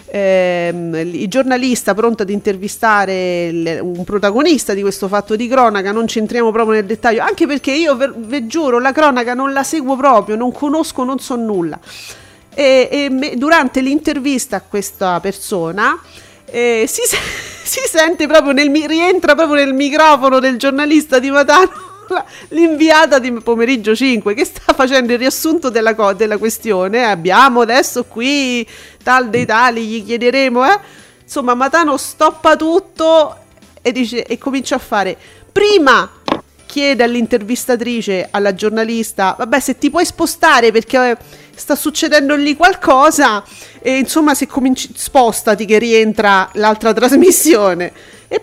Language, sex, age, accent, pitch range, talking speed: Italian, female, 40-59, native, 220-295 Hz, 140 wpm